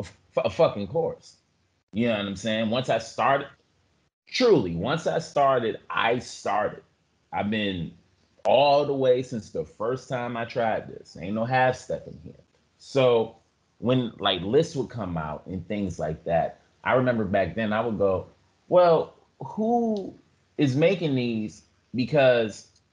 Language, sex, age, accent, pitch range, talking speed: English, male, 30-49, American, 90-120 Hz, 155 wpm